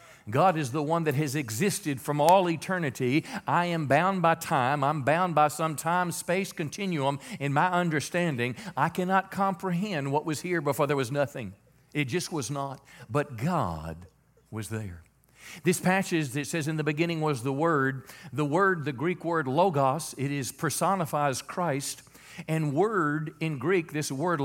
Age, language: 50-69, English